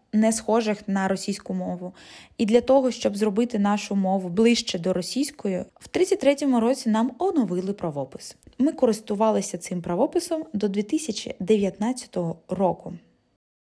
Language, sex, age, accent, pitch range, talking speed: Ukrainian, female, 20-39, native, 195-245 Hz, 120 wpm